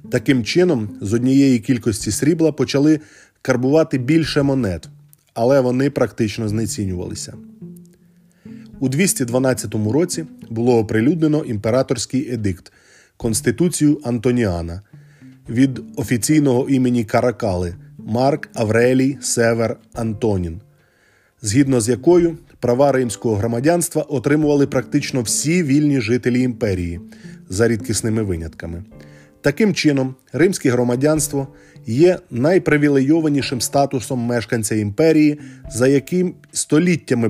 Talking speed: 95 wpm